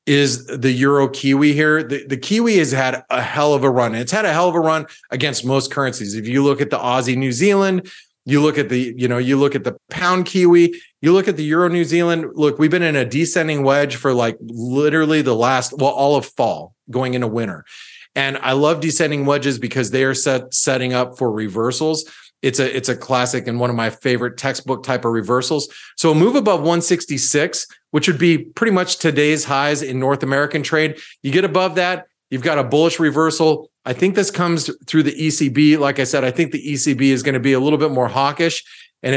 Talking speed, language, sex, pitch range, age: 225 wpm, English, male, 130-160 Hz, 30-49